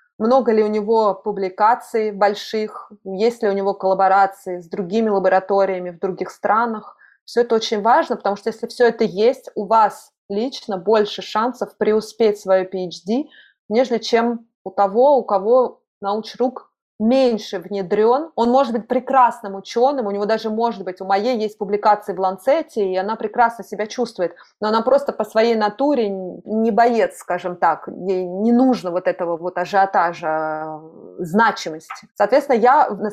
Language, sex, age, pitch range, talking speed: Russian, female, 20-39, 190-230 Hz, 155 wpm